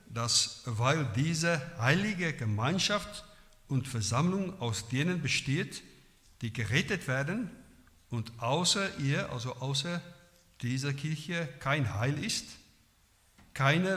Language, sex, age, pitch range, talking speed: German, male, 60-79, 120-150 Hz, 105 wpm